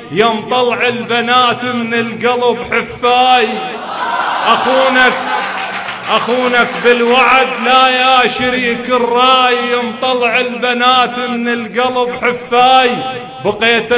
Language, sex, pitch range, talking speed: Arabic, male, 205-255 Hz, 75 wpm